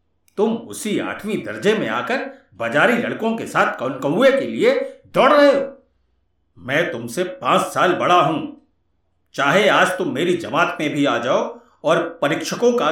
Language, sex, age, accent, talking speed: Hindi, male, 50-69, native, 160 wpm